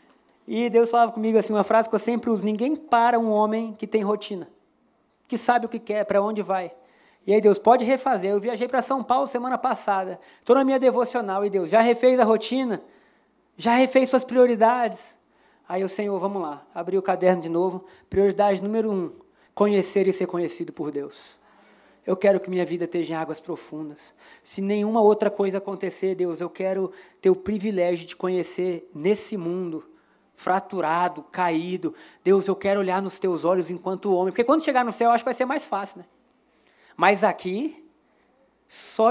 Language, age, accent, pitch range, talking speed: Portuguese, 20-39, Brazilian, 185-235 Hz, 185 wpm